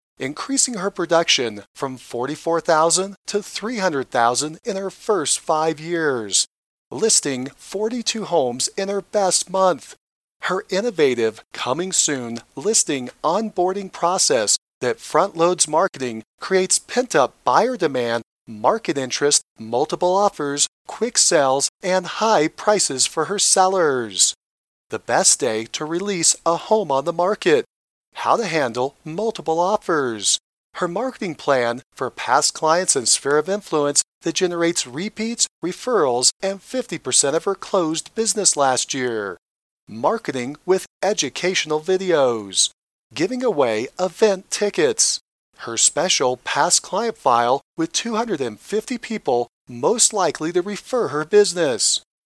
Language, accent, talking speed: English, American, 120 wpm